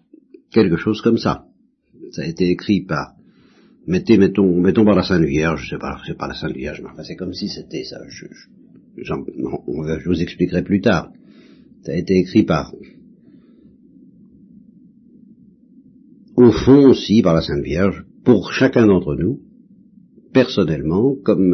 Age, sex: 60-79, male